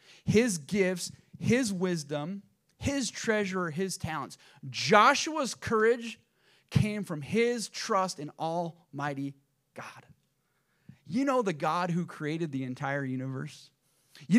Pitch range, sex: 145-190 Hz, male